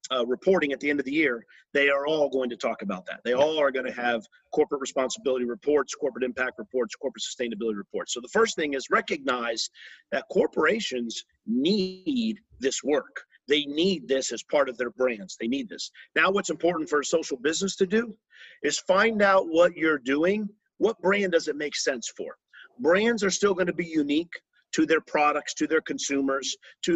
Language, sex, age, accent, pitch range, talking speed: English, male, 50-69, American, 130-190 Hz, 200 wpm